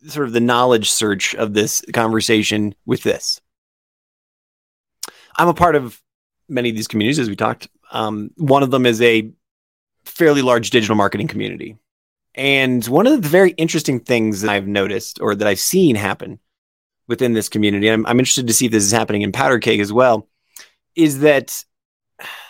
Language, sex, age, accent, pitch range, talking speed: English, male, 30-49, American, 110-140 Hz, 180 wpm